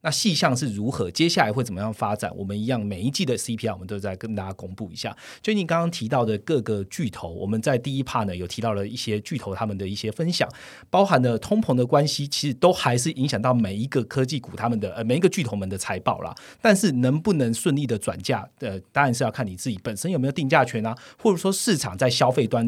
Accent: native